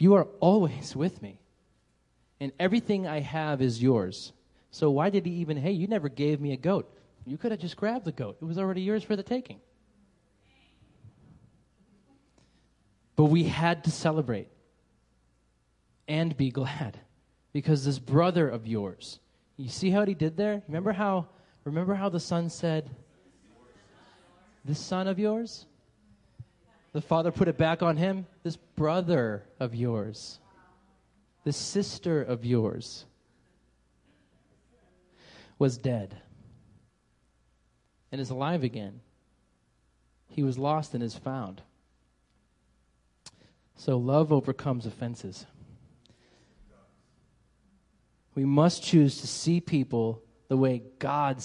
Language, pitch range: English, 110-165 Hz